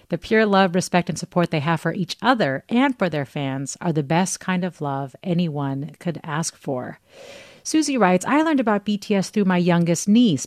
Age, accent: 40-59, American